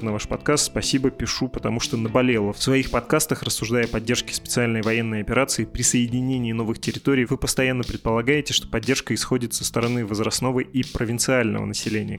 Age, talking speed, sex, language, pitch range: 20-39, 160 wpm, male, Russian, 110-130 Hz